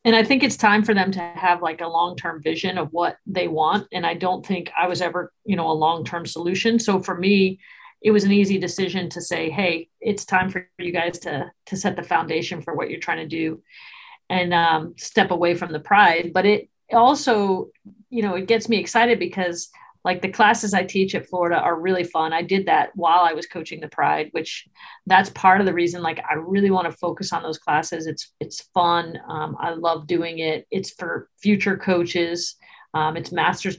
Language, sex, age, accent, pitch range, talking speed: English, female, 40-59, American, 170-200 Hz, 215 wpm